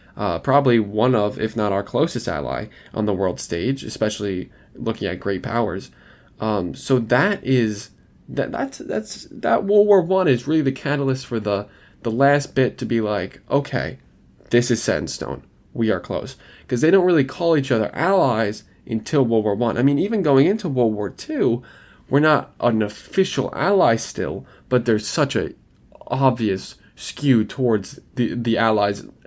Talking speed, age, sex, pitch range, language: 180 wpm, 10-29, male, 105-135 Hz, English